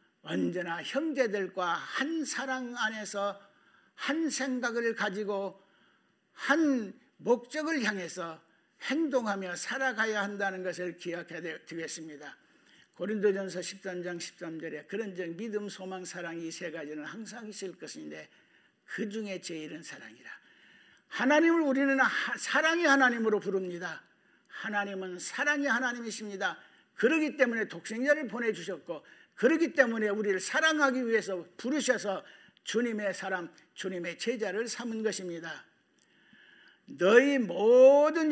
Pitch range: 180-265 Hz